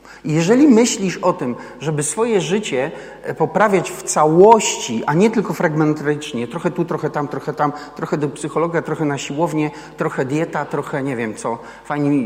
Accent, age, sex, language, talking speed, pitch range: native, 40-59, male, Polish, 160 wpm, 145-185 Hz